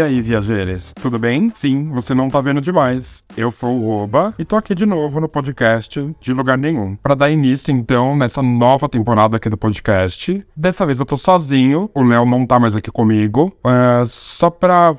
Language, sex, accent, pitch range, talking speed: Portuguese, male, Brazilian, 120-160 Hz, 195 wpm